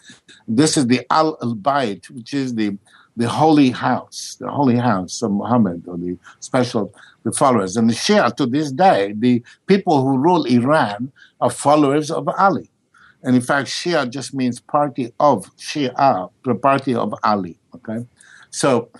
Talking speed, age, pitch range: 160 wpm, 60-79, 120-145 Hz